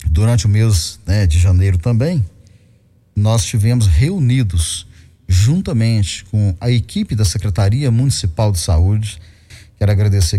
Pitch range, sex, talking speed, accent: 95-125 Hz, male, 120 wpm, Brazilian